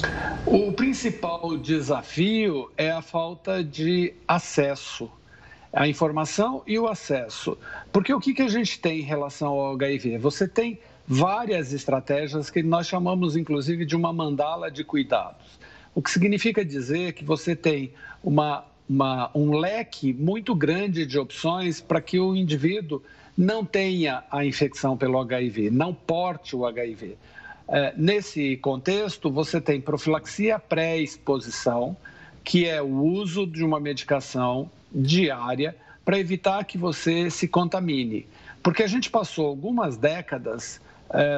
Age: 60-79